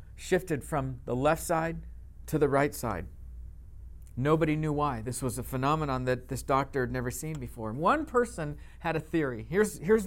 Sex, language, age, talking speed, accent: male, English, 50-69, 180 wpm, American